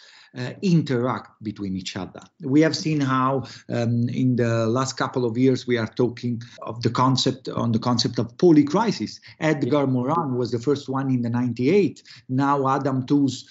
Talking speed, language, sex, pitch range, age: 180 wpm, English, male, 125-155 Hz, 50-69